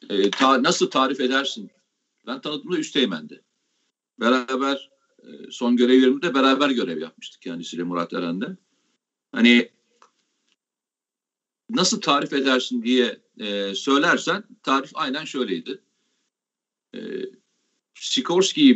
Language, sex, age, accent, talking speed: Turkish, male, 50-69, native, 85 wpm